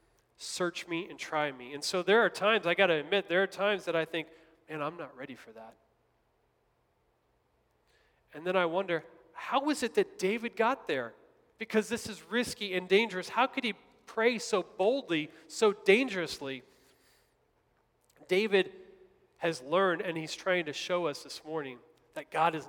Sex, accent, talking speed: male, American, 170 wpm